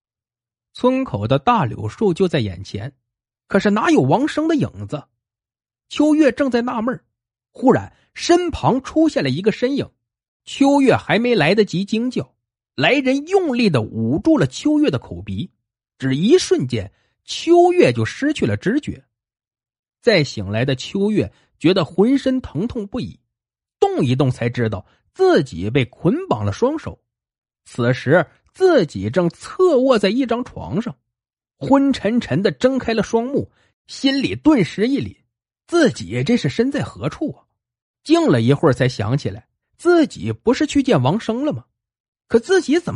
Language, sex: Chinese, male